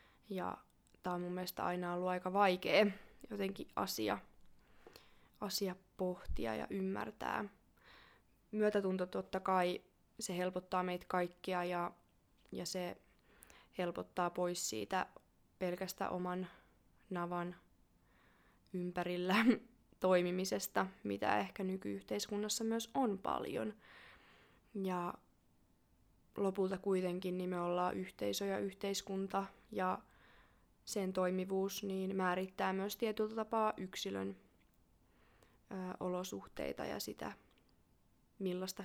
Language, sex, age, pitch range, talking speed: Finnish, female, 20-39, 175-195 Hz, 90 wpm